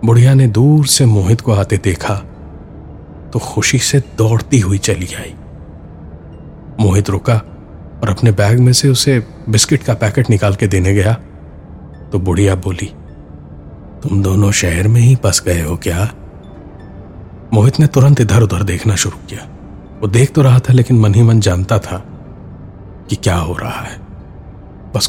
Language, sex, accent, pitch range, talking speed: Hindi, male, native, 85-115 Hz, 160 wpm